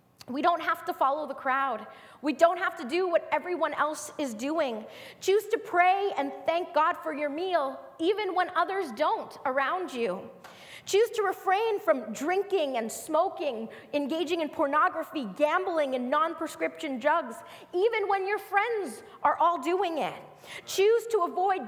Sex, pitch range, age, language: female, 290-390 Hz, 20-39, English